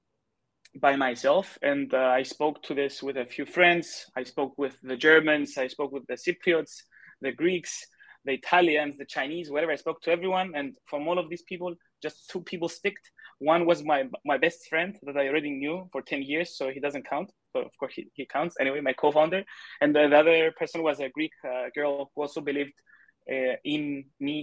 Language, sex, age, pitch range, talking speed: English, male, 20-39, 135-160 Hz, 210 wpm